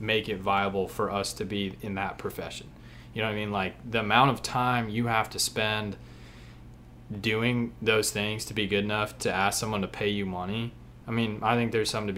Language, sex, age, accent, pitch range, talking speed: English, male, 20-39, American, 100-115 Hz, 215 wpm